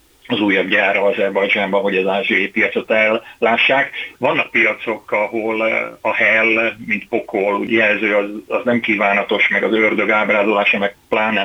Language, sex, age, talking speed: Hungarian, male, 30-49, 145 wpm